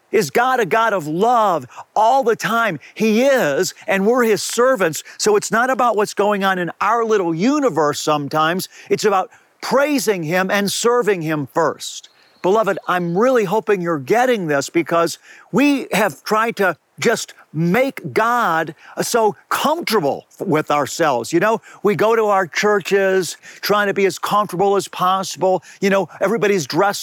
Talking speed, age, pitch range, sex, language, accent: 160 wpm, 50-69, 180-230 Hz, male, English, American